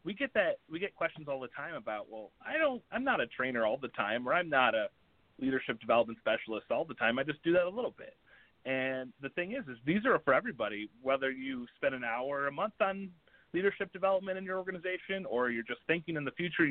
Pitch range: 120-160 Hz